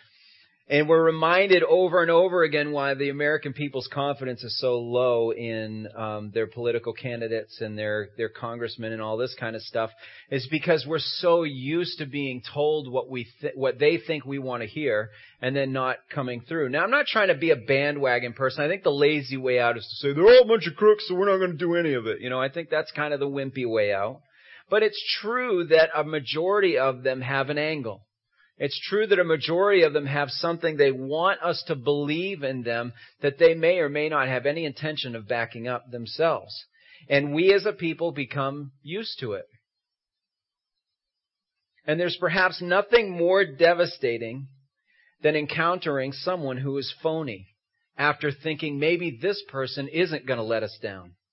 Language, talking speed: English, 200 wpm